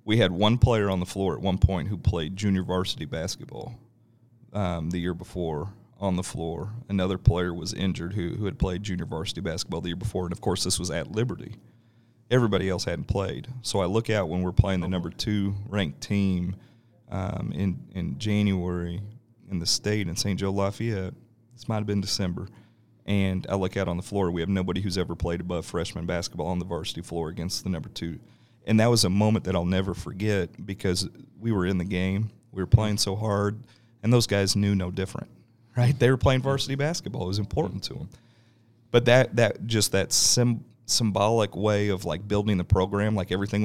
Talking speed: 205 wpm